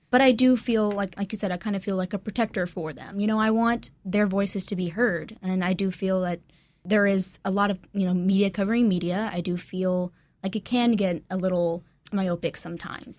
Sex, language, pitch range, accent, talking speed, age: female, English, 175-205 Hz, American, 235 wpm, 10-29